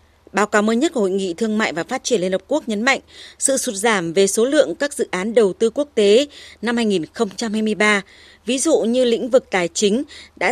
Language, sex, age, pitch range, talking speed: Vietnamese, female, 20-39, 200-250 Hz, 230 wpm